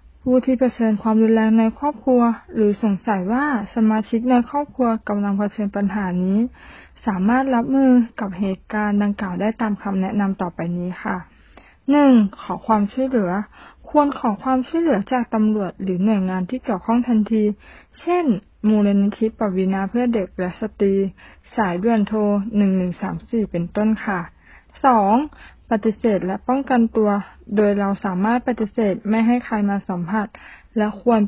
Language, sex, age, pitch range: Thai, female, 20-39, 195-235 Hz